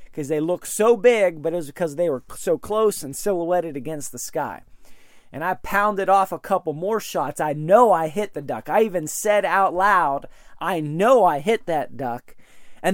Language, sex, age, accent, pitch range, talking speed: English, male, 30-49, American, 160-210 Hz, 205 wpm